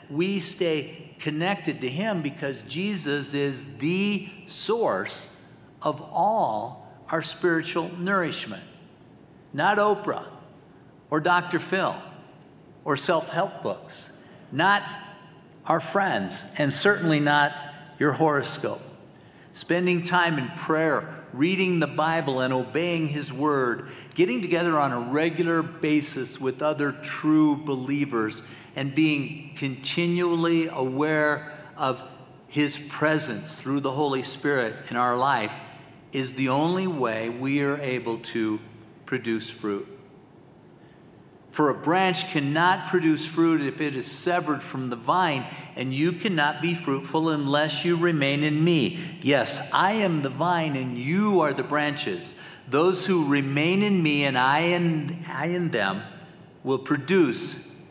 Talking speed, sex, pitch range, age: 125 wpm, male, 140-175 Hz, 50-69